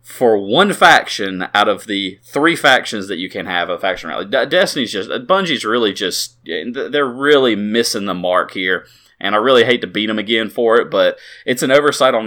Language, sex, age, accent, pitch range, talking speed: English, male, 30-49, American, 105-145 Hz, 200 wpm